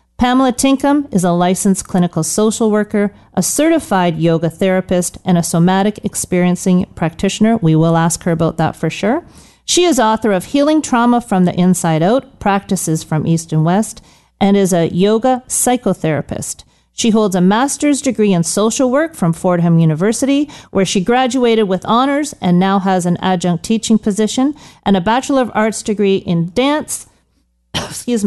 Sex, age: female, 40-59